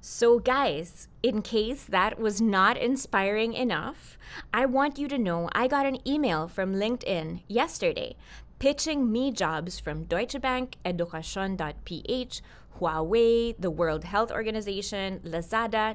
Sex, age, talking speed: female, 20-39, 130 wpm